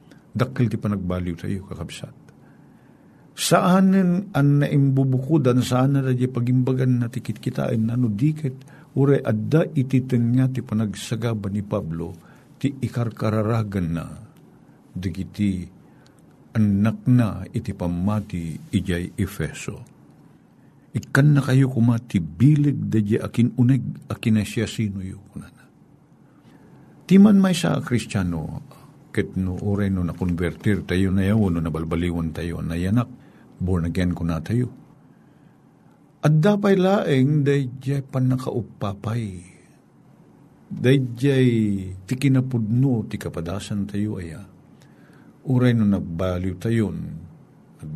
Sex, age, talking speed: male, 50-69, 115 wpm